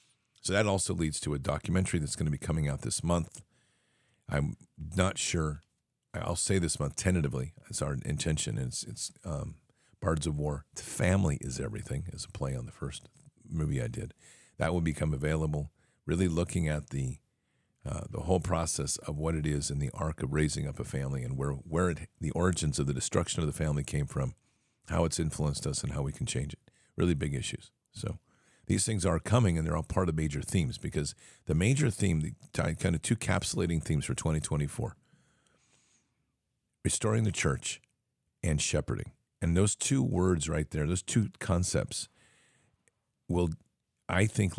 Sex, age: male, 50-69